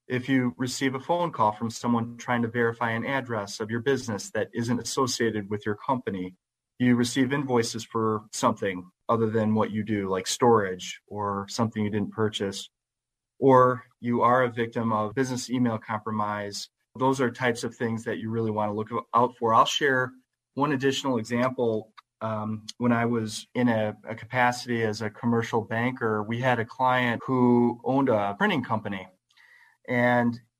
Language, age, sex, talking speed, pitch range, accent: English, 30-49, male, 175 wpm, 110-125 Hz, American